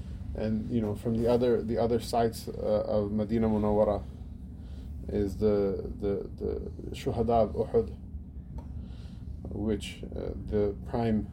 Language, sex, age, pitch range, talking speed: English, male, 20-39, 90-115 Hz, 120 wpm